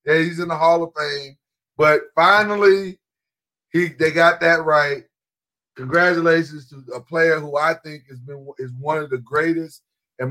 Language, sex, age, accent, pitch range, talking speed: English, male, 40-59, American, 145-180 Hz, 170 wpm